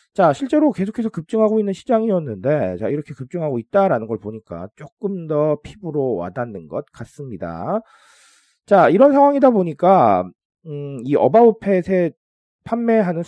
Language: Korean